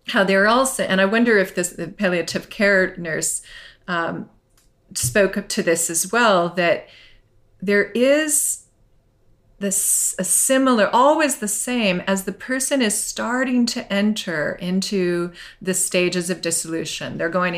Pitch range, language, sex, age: 170-205 Hz, German, female, 40-59